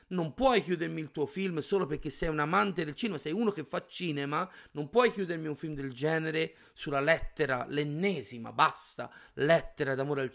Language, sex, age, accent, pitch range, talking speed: Italian, male, 30-49, native, 140-175 Hz, 185 wpm